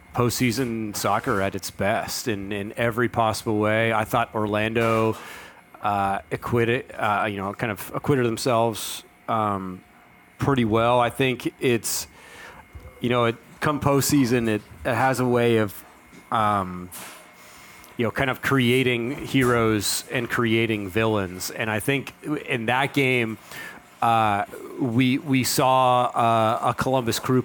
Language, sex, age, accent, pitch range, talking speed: English, male, 30-49, American, 110-130 Hz, 135 wpm